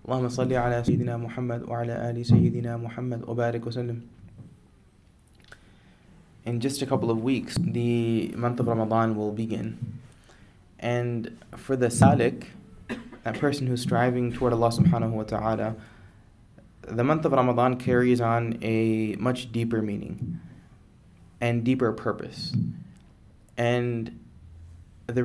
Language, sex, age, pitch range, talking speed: English, male, 20-39, 110-125 Hz, 95 wpm